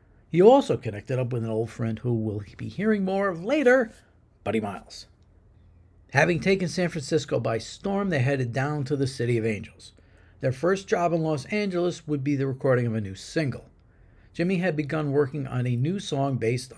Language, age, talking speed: English, 50-69, 195 wpm